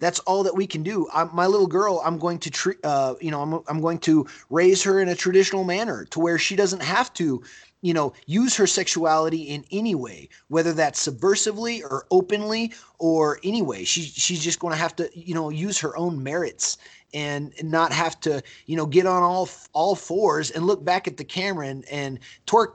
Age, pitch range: 30-49, 160-195 Hz